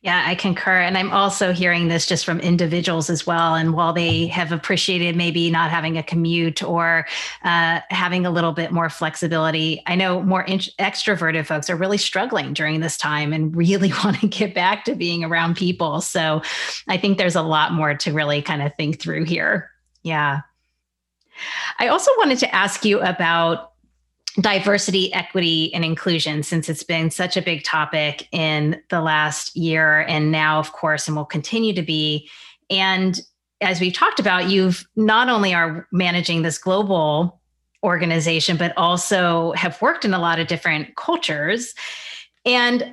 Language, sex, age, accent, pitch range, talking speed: English, female, 30-49, American, 165-200 Hz, 170 wpm